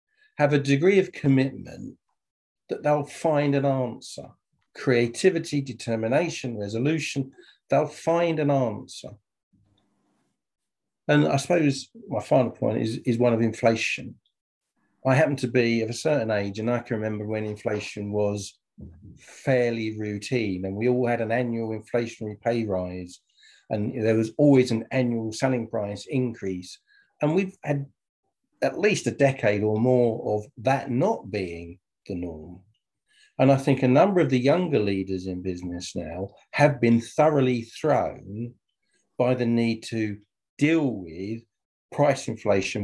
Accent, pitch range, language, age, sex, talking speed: British, 105-140 Hz, English, 50-69, male, 145 wpm